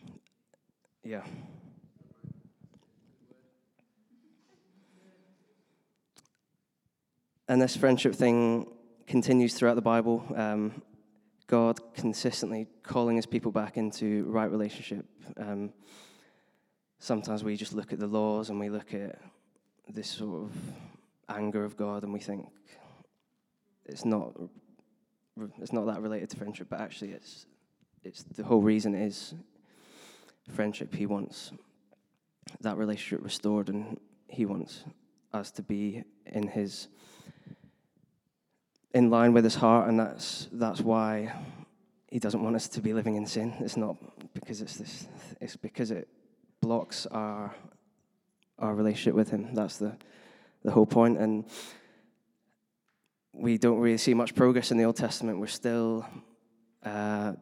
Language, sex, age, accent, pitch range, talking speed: English, male, 10-29, British, 105-120 Hz, 125 wpm